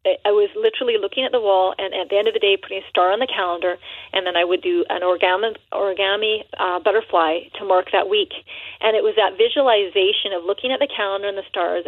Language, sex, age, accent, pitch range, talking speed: English, female, 30-49, American, 195-260 Hz, 235 wpm